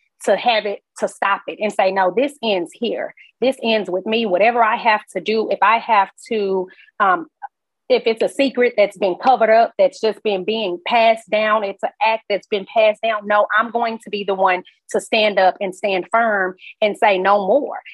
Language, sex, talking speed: English, female, 215 wpm